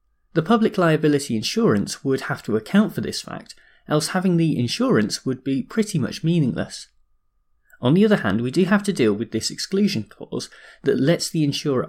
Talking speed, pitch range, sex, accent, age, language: 185 wpm, 115-165 Hz, male, British, 30-49, English